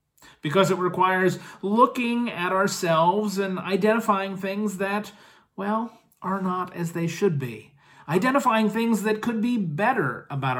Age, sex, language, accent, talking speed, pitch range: 40-59, male, English, American, 135 wpm, 120-170 Hz